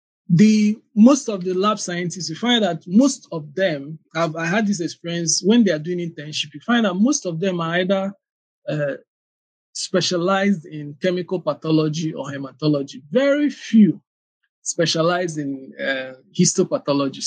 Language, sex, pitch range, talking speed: English, male, 155-200 Hz, 150 wpm